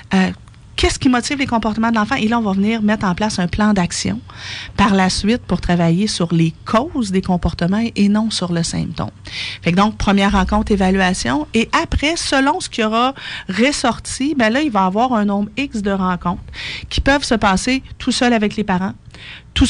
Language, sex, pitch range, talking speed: French, female, 180-240 Hz, 205 wpm